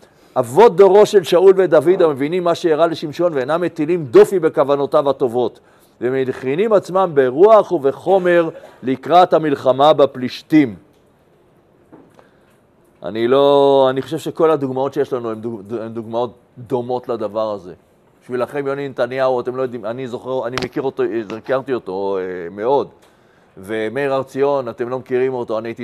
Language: Hebrew